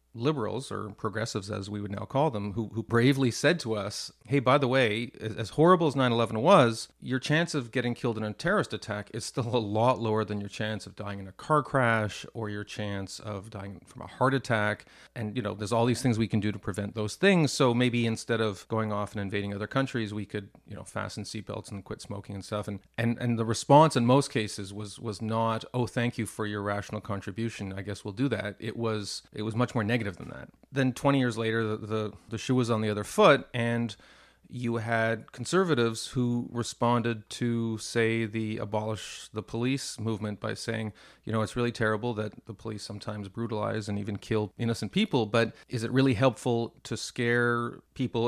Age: 40-59